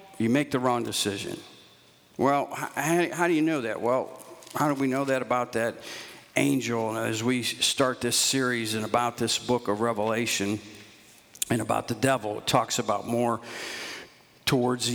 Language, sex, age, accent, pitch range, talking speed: English, male, 50-69, American, 115-150 Hz, 165 wpm